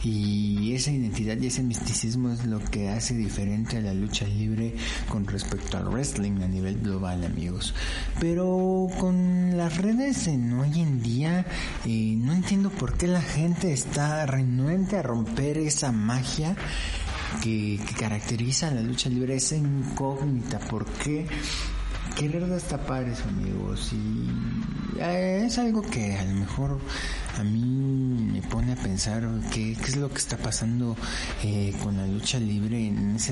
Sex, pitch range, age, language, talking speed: male, 105-145 Hz, 50-69, Spanish, 155 wpm